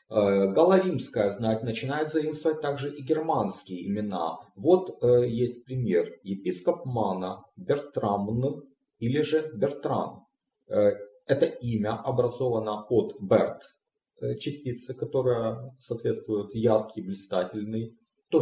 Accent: native